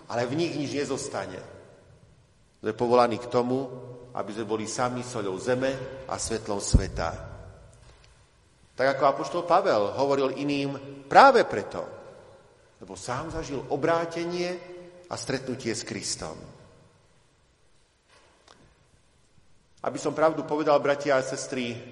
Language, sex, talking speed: Slovak, male, 115 wpm